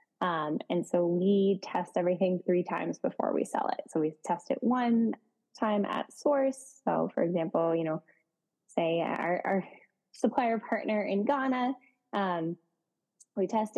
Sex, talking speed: female, 150 wpm